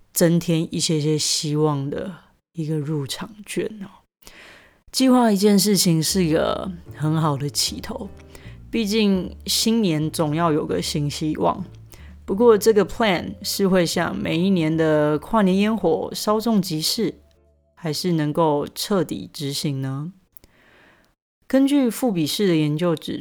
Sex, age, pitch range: female, 30-49, 145-180 Hz